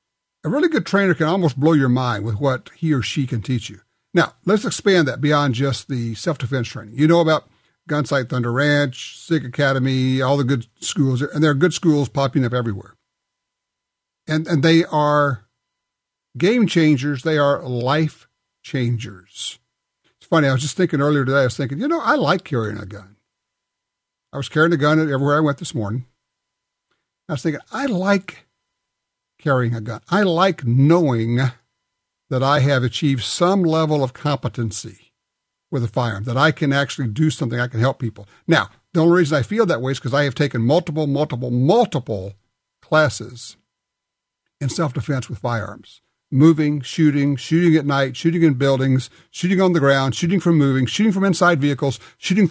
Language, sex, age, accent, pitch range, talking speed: English, male, 50-69, American, 125-160 Hz, 180 wpm